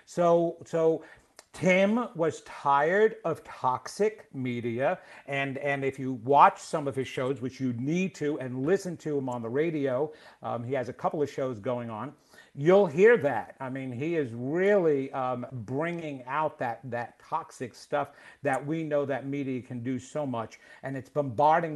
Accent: American